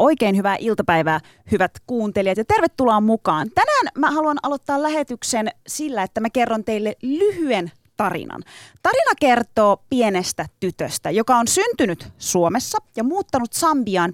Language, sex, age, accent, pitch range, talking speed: Finnish, female, 30-49, native, 180-265 Hz, 130 wpm